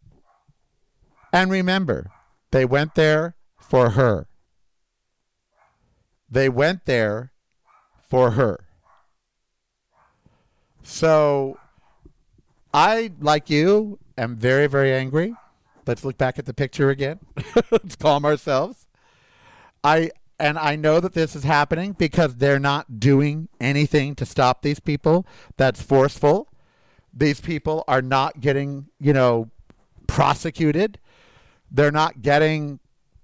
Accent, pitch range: American, 130-165 Hz